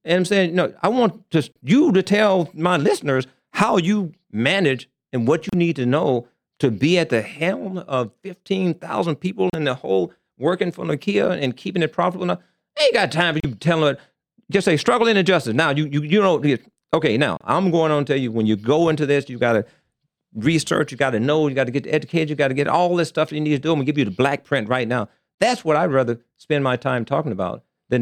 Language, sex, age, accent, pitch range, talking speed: English, male, 50-69, American, 120-165 Hz, 255 wpm